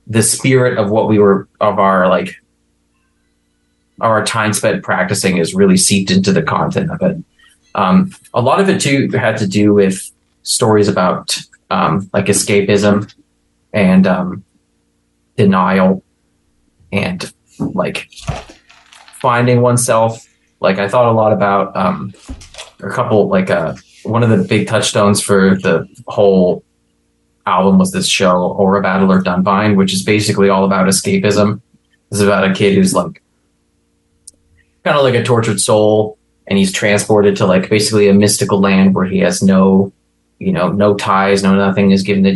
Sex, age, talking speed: male, 20-39, 155 wpm